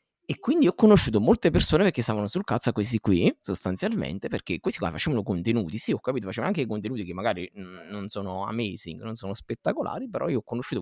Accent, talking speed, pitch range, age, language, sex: native, 205 wpm, 100-135 Hz, 30-49, Italian, male